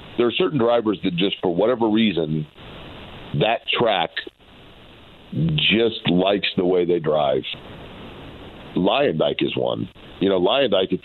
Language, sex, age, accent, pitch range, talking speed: English, male, 40-59, American, 90-105 Hz, 130 wpm